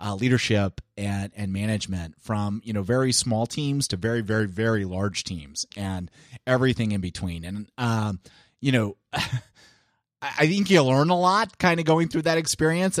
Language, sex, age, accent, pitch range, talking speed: English, male, 30-49, American, 105-140 Hz, 170 wpm